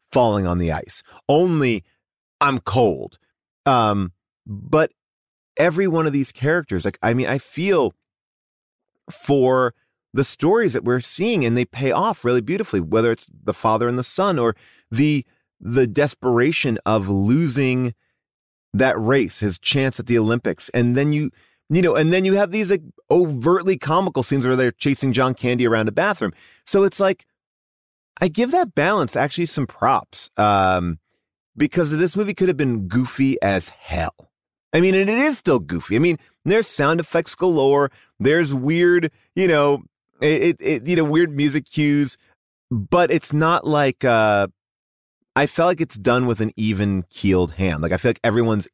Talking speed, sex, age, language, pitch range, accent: 170 wpm, male, 30-49, English, 110-160 Hz, American